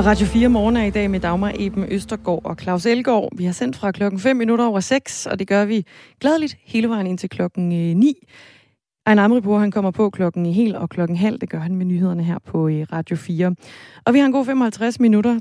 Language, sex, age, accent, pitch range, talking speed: Danish, female, 20-39, native, 175-225 Hz, 235 wpm